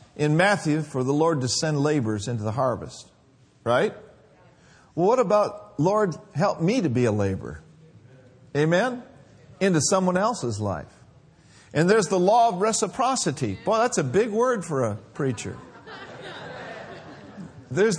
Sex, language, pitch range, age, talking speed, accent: male, English, 145-215 Hz, 50-69, 140 wpm, American